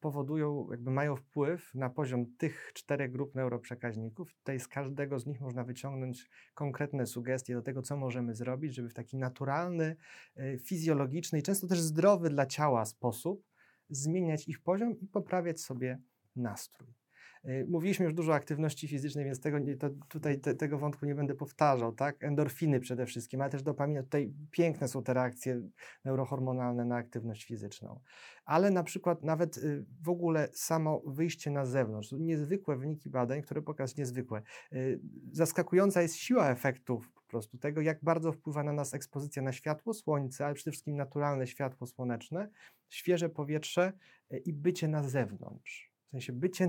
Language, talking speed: Polish, 160 wpm